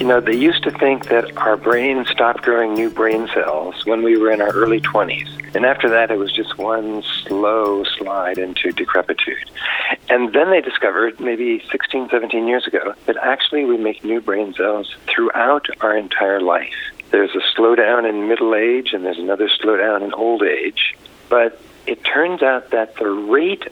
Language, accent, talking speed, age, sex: English, American, 180 wpm, 50-69, male